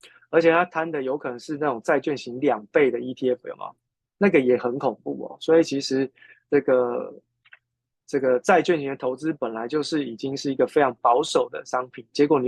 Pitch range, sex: 120-145 Hz, male